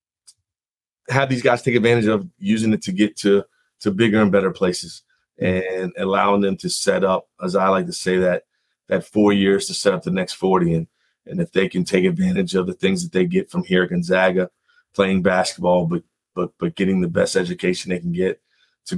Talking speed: 210 wpm